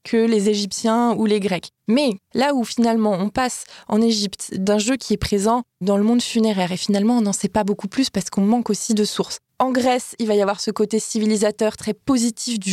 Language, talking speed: French, 230 wpm